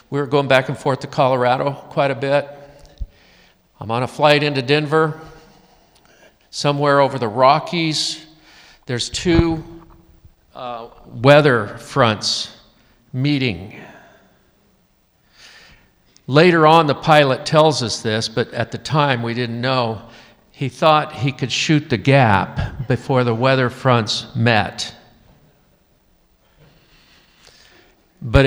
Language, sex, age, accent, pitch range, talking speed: English, male, 50-69, American, 120-150 Hz, 115 wpm